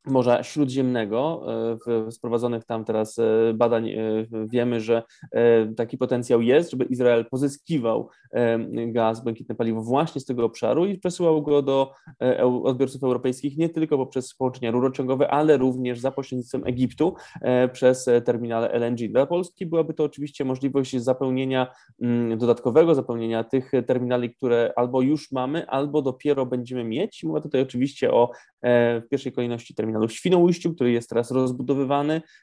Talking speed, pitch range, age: 135 wpm, 120-140 Hz, 20-39